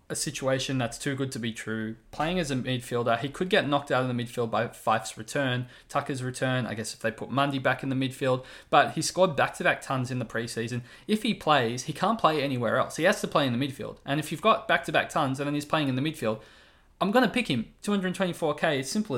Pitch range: 115-150 Hz